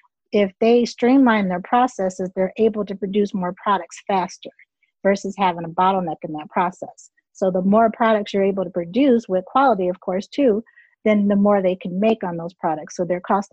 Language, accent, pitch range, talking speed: English, American, 185-230 Hz, 195 wpm